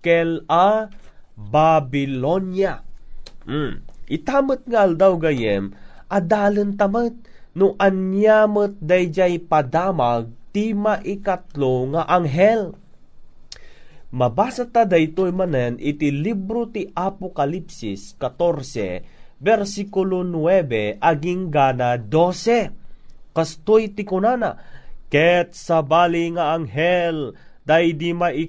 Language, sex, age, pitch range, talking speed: Filipino, male, 30-49, 155-185 Hz, 95 wpm